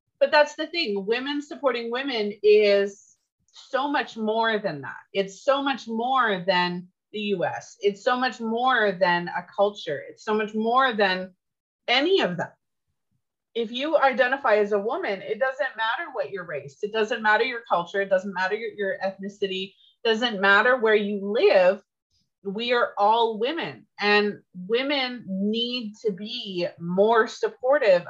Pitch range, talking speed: 195-250 Hz, 160 wpm